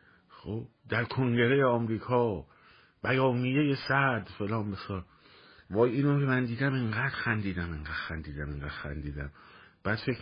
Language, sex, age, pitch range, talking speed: Persian, male, 50-69, 85-120 Hz, 125 wpm